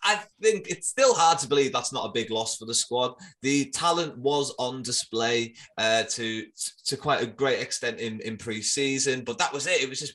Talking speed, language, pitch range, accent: 220 wpm, English, 115-145 Hz, British